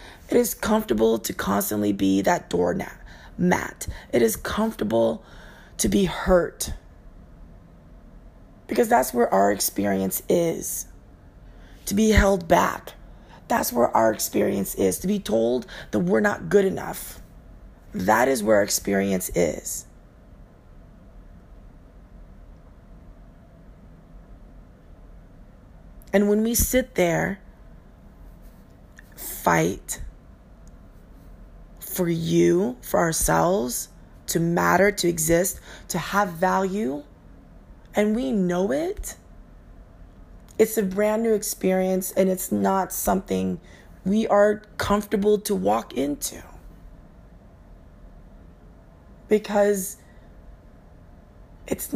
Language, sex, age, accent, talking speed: English, female, 30-49, American, 95 wpm